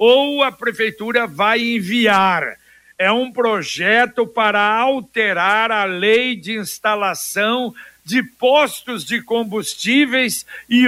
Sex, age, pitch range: male, 60-79, 220-280 Hz